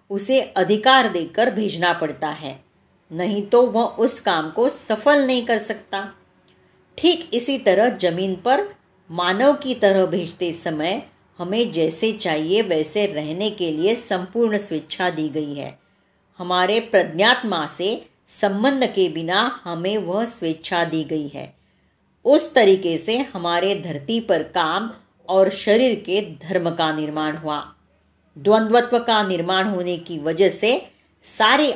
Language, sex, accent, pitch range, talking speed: Marathi, female, native, 165-220 Hz, 135 wpm